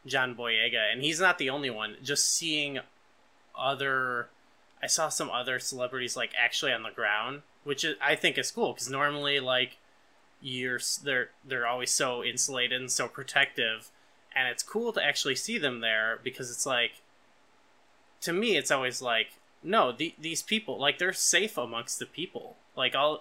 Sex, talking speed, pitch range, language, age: male, 175 wpm, 125-170 Hz, English, 20-39